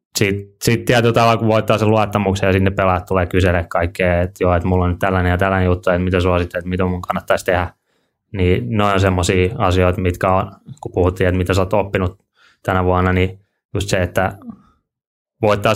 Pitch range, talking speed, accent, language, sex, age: 90-105 Hz, 190 wpm, native, Finnish, male, 20-39